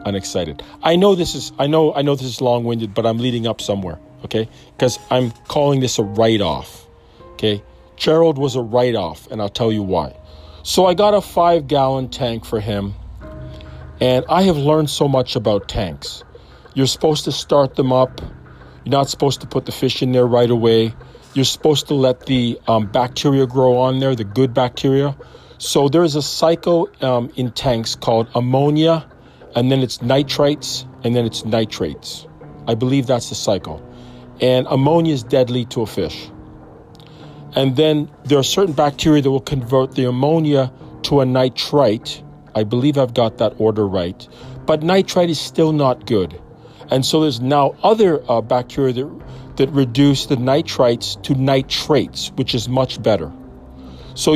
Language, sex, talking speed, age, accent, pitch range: English, male, 170 wpm, 40-59, American, 115-145 Hz